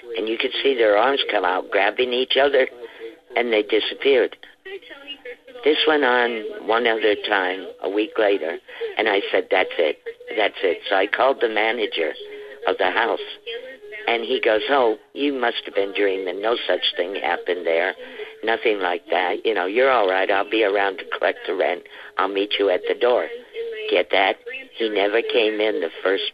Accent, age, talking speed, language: American, 50-69, 185 wpm, English